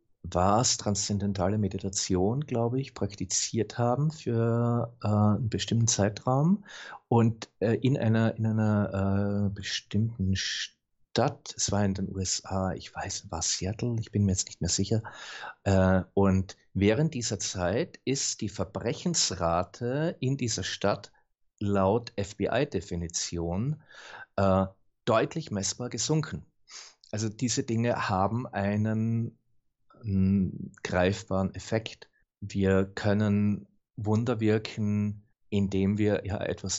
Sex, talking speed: male, 110 wpm